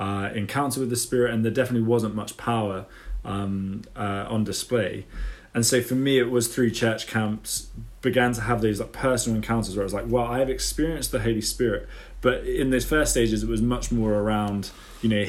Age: 20-39